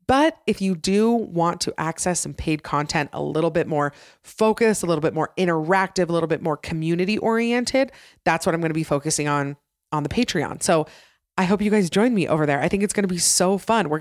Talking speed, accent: 235 wpm, American